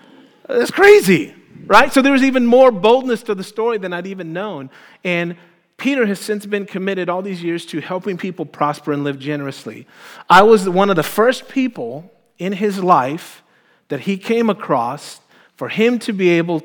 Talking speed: 185 wpm